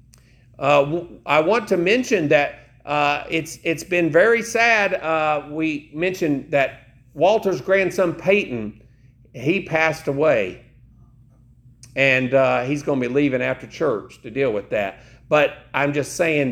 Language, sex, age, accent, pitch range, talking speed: English, male, 50-69, American, 130-190 Hz, 140 wpm